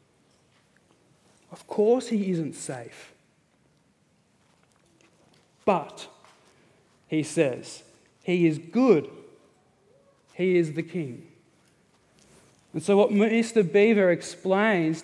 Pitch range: 165-200 Hz